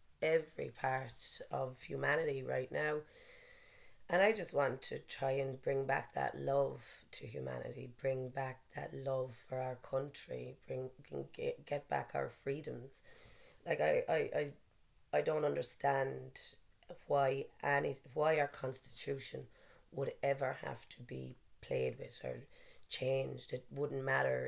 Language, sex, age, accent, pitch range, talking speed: English, female, 30-49, Irish, 130-140 Hz, 135 wpm